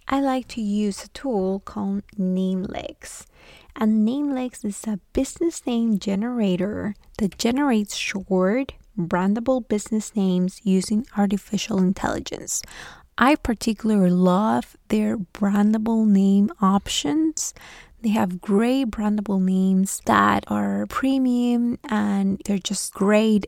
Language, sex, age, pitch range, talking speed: English, female, 20-39, 200-245 Hz, 110 wpm